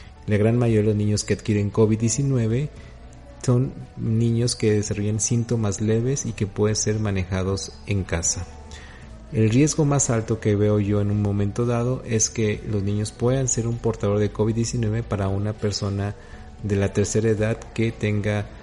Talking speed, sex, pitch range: 170 wpm, male, 100-115 Hz